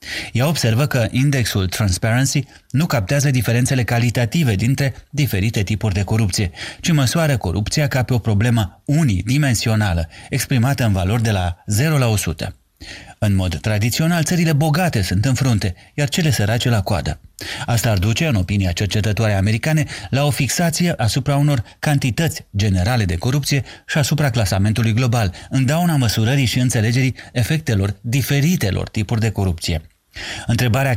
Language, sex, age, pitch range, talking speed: Romanian, male, 30-49, 100-135 Hz, 145 wpm